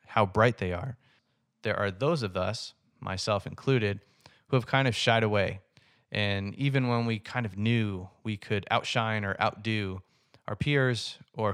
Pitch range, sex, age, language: 105-125 Hz, male, 20-39, English